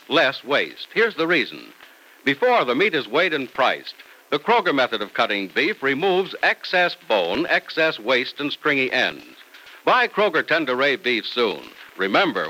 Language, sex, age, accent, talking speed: English, male, 60-79, American, 155 wpm